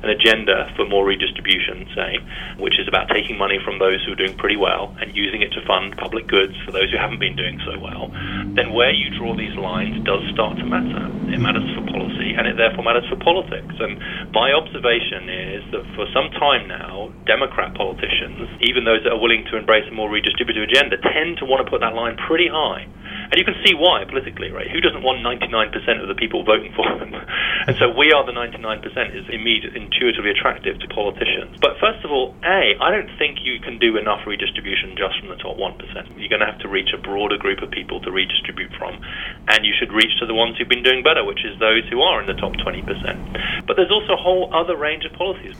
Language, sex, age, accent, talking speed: English, male, 30-49, British, 230 wpm